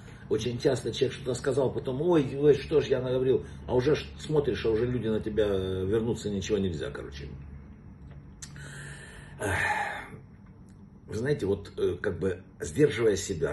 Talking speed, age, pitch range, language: 140 wpm, 60-79, 95-140 Hz, Russian